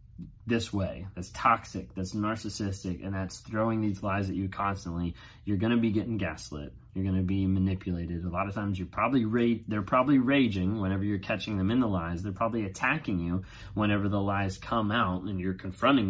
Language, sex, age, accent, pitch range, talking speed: English, male, 20-39, American, 95-115 Hz, 200 wpm